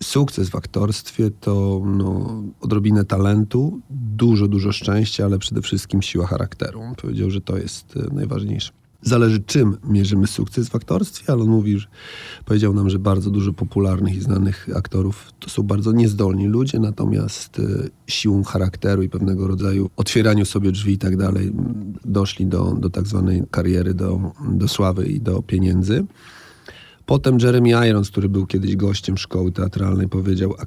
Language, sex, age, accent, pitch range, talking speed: Polish, male, 40-59, native, 95-110 Hz, 155 wpm